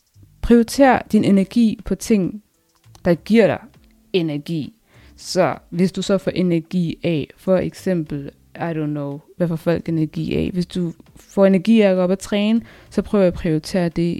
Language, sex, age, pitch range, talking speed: Danish, female, 20-39, 170-210 Hz, 175 wpm